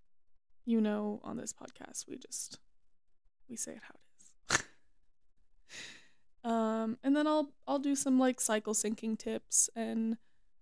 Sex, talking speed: female, 140 wpm